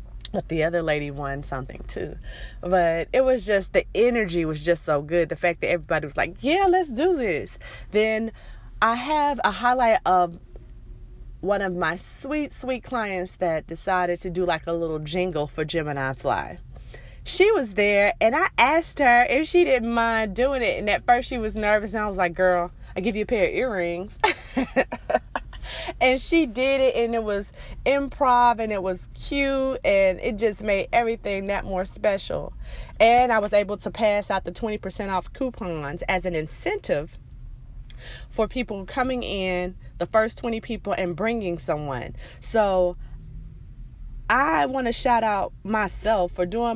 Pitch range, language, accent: 170-225 Hz, English, American